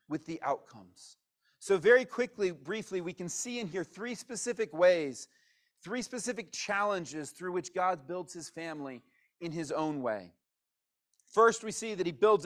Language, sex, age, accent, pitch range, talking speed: English, male, 40-59, American, 160-220 Hz, 165 wpm